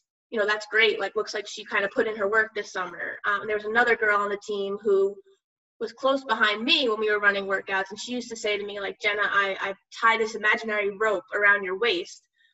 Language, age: English, 20-39